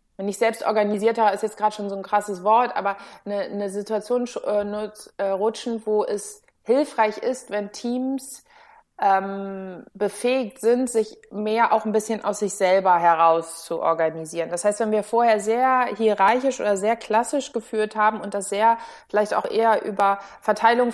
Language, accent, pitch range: German, German, 200-230 Hz